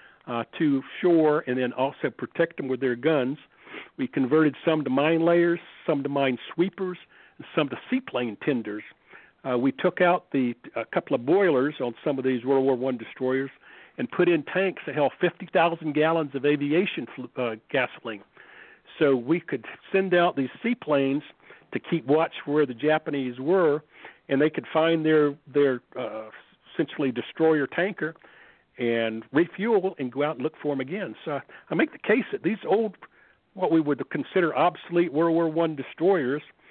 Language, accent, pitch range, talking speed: English, American, 140-175 Hz, 170 wpm